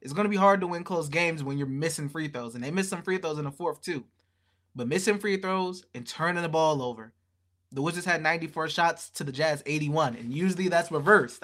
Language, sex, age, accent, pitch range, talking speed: English, male, 20-39, American, 130-180 Hz, 235 wpm